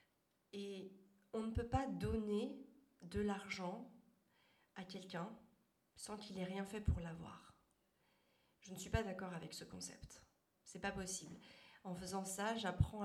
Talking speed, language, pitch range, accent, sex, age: 150 wpm, French, 165-200 Hz, French, female, 40-59